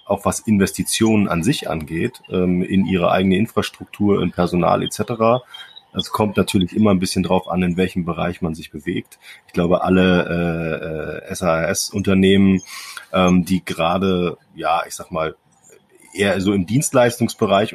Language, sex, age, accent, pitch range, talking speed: German, male, 30-49, German, 90-105 Hz, 150 wpm